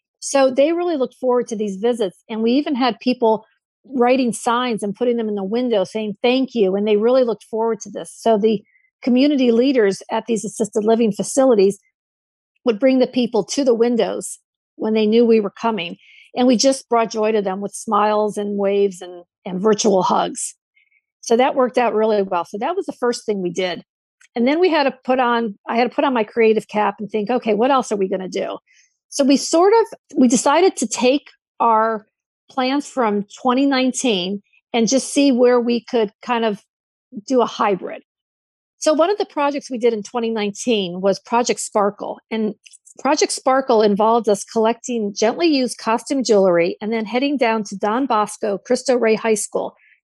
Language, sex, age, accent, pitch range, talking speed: English, female, 50-69, American, 215-260 Hz, 195 wpm